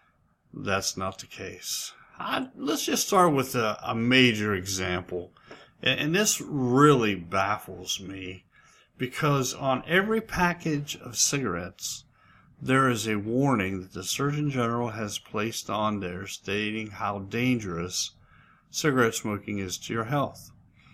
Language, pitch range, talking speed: English, 105-145 Hz, 125 wpm